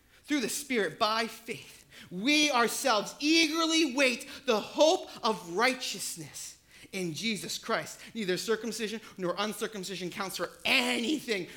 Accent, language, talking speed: American, English, 120 wpm